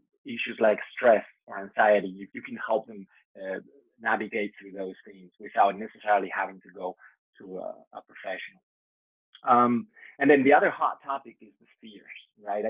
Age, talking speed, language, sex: 20-39, 165 wpm, English, male